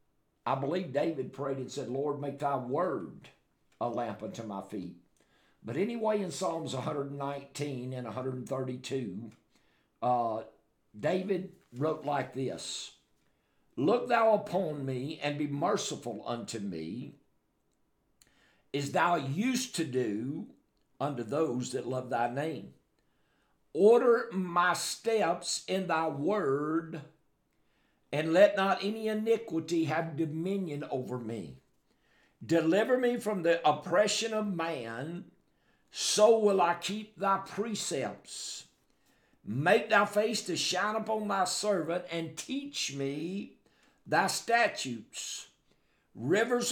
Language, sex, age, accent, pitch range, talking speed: English, male, 60-79, American, 140-200 Hz, 115 wpm